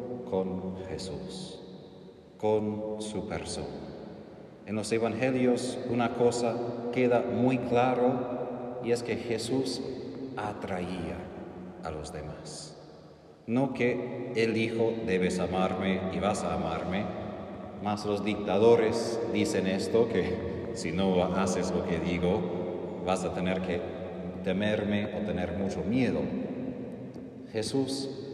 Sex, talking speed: male, 110 wpm